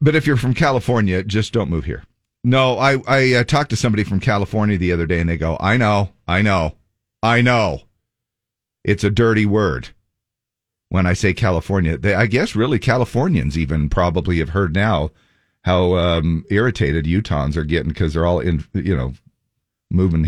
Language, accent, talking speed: English, American, 180 wpm